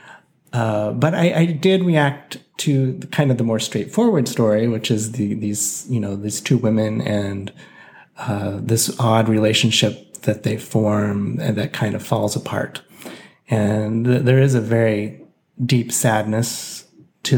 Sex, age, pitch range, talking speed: male, 30-49, 105-125 Hz, 160 wpm